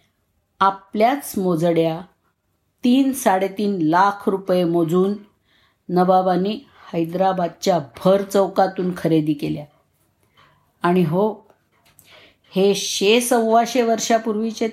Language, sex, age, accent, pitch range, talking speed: Marathi, female, 50-69, native, 165-210 Hz, 75 wpm